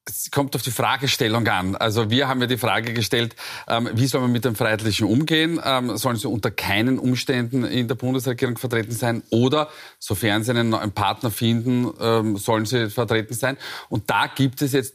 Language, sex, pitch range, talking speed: German, male, 115-140 Hz, 195 wpm